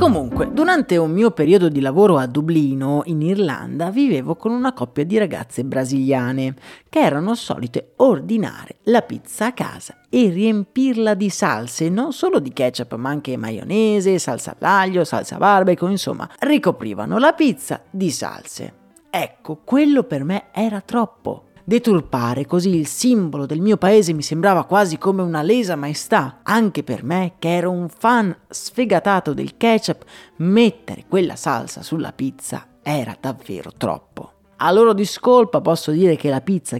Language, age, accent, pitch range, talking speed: Italian, 40-59, native, 145-225 Hz, 150 wpm